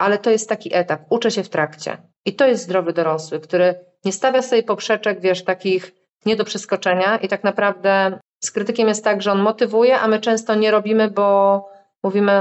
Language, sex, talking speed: Polish, female, 200 wpm